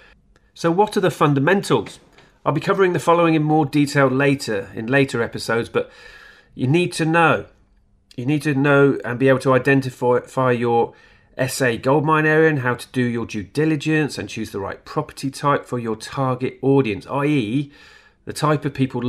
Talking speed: 180 wpm